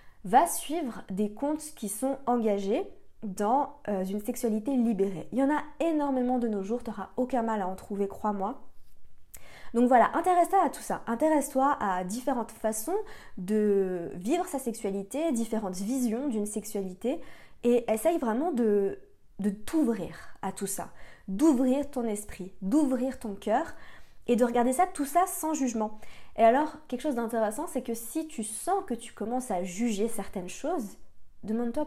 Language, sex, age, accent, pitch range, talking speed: French, female, 20-39, French, 210-270 Hz, 160 wpm